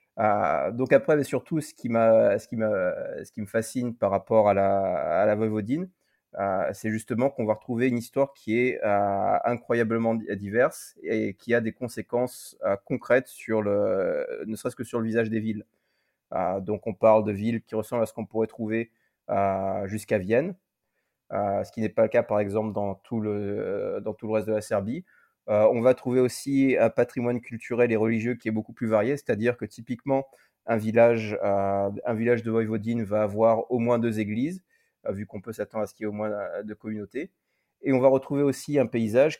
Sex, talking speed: male, 205 wpm